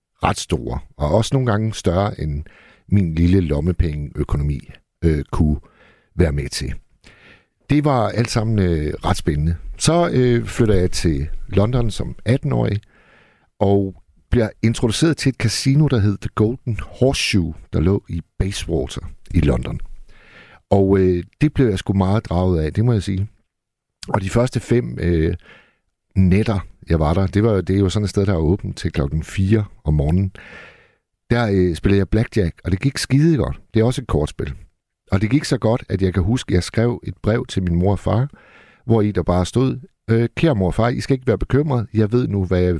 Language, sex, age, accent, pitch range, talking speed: Danish, male, 60-79, native, 85-120 Hz, 195 wpm